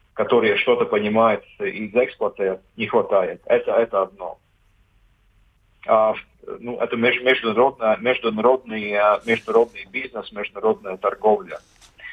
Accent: native